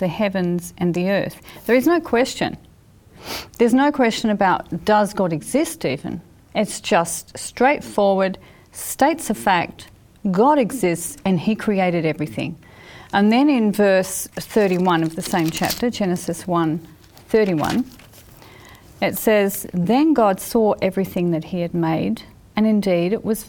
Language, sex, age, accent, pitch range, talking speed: English, female, 40-59, Australian, 175-225 Hz, 140 wpm